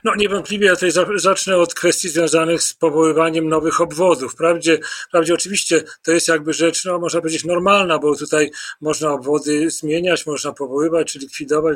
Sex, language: male, Polish